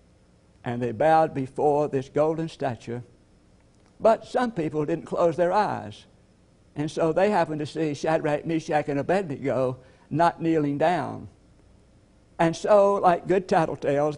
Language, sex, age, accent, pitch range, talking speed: English, male, 60-79, American, 140-175 Hz, 135 wpm